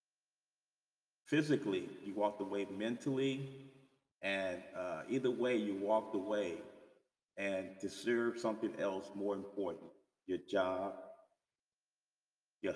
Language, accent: English, American